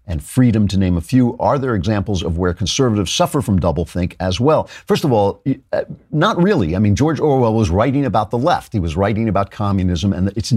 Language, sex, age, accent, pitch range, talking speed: English, male, 50-69, American, 95-125 Hz, 215 wpm